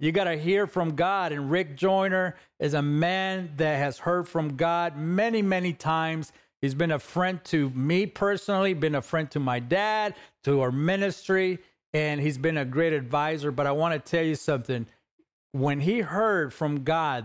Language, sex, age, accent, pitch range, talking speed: English, male, 40-59, American, 150-185 Hz, 190 wpm